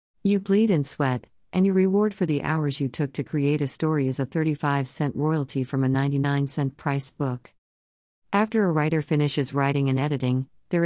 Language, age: English, 50-69